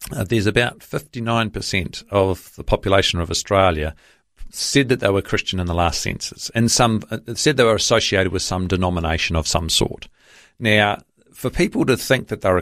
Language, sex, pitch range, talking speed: English, male, 90-115 Hz, 180 wpm